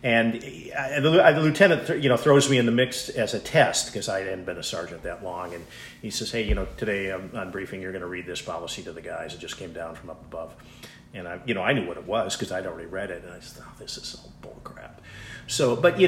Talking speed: 265 wpm